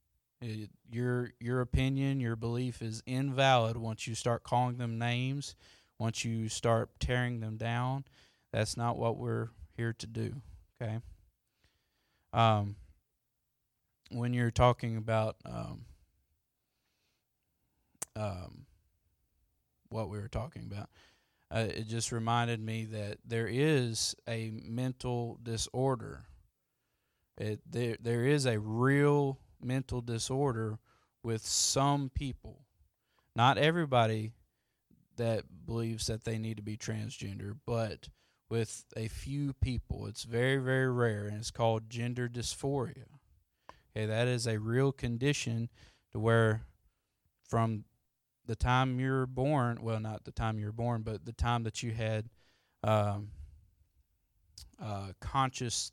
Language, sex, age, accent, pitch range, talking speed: English, male, 20-39, American, 110-125 Hz, 120 wpm